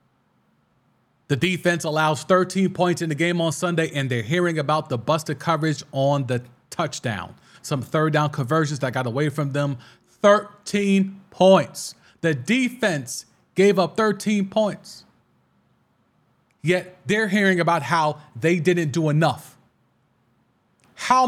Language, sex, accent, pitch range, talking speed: English, male, American, 170-255 Hz, 135 wpm